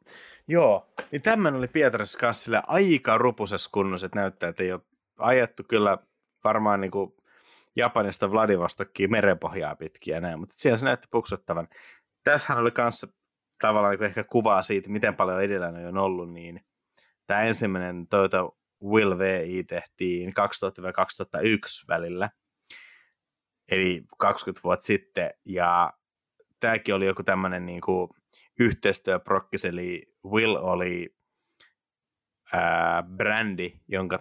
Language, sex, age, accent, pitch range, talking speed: Finnish, male, 30-49, native, 85-100 Hz, 120 wpm